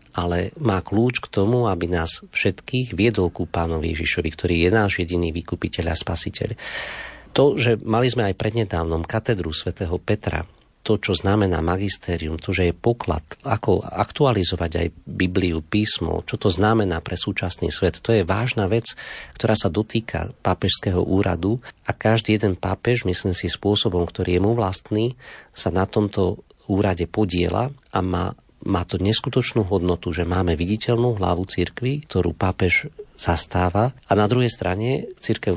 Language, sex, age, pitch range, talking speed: Slovak, male, 40-59, 90-110 Hz, 155 wpm